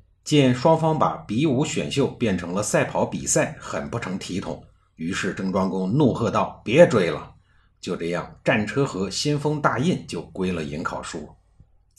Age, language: 50-69, Chinese